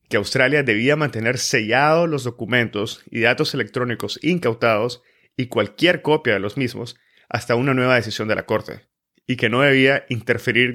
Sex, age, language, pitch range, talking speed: male, 30-49, Spanish, 110-135 Hz, 160 wpm